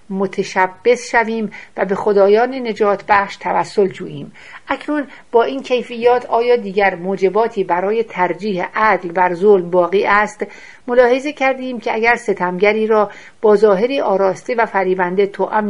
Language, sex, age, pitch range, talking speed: Persian, female, 60-79, 190-230 Hz, 135 wpm